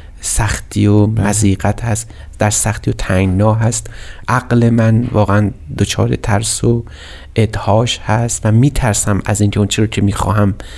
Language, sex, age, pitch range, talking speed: Persian, male, 30-49, 105-120 Hz, 145 wpm